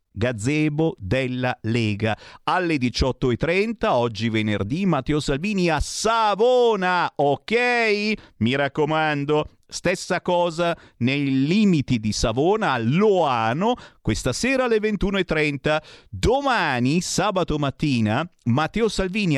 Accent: native